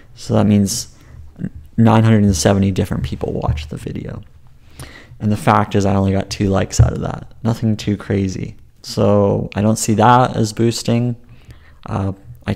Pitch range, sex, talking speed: 100-115 Hz, male, 160 wpm